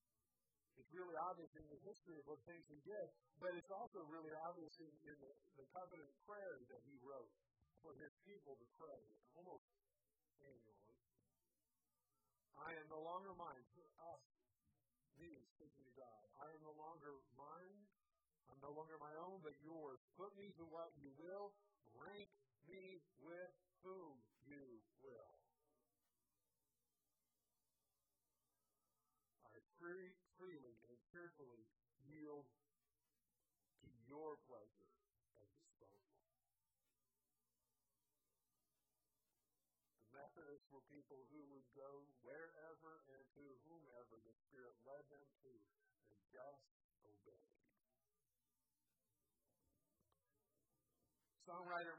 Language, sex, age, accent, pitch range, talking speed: English, female, 50-69, American, 120-175 Hz, 110 wpm